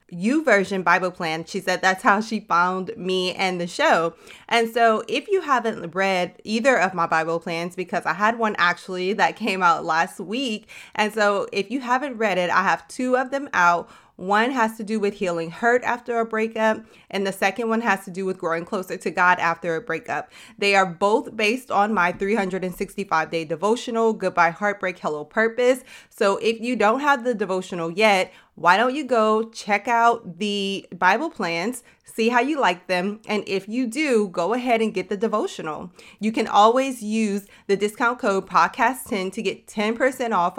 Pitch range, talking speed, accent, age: 185-230 Hz, 195 wpm, American, 30-49